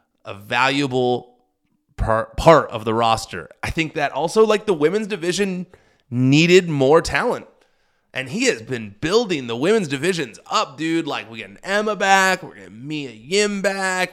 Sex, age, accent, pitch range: male, 30-49, American, 110-155 Hz